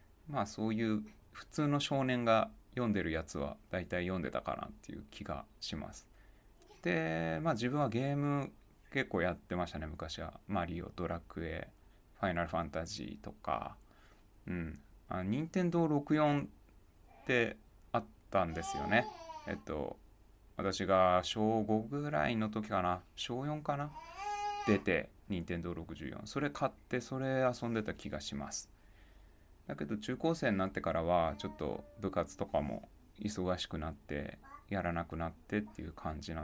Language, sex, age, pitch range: Japanese, male, 20-39, 85-120 Hz